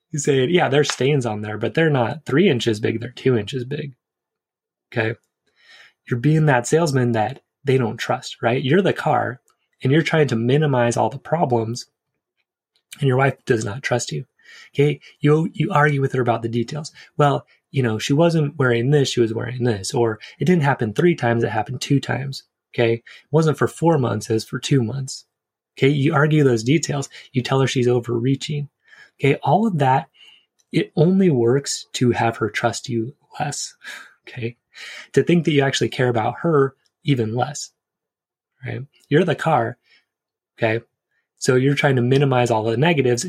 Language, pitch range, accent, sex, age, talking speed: English, 120-150 Hz, American, male, 20-39, 185 wpm